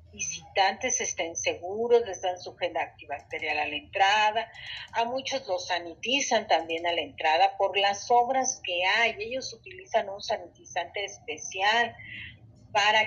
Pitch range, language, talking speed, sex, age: 175-235 Hz, Spanish, 140 wpm, female, 40-59